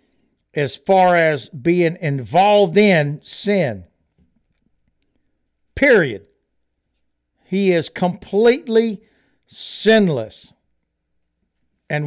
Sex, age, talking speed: male, 60-79, 65 wpm